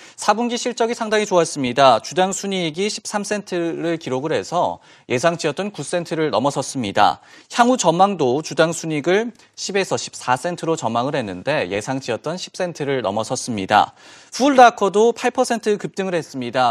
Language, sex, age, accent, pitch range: Korean, male, 30-49, native, 145-200 Hz